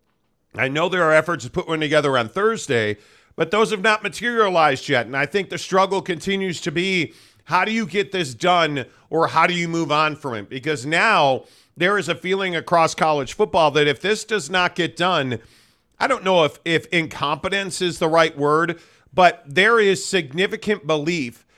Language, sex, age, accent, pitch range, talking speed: English, male, 40-59, American, 155-185 Hz, 195 wpm